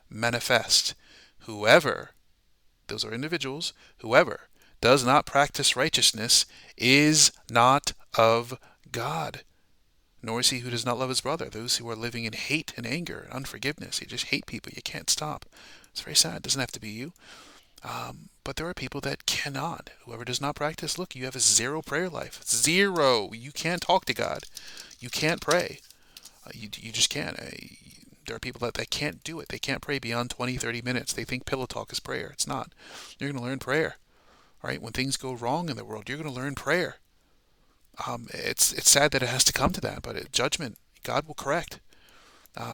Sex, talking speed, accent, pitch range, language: male, 200 wpm, American, 120-150 Hz, English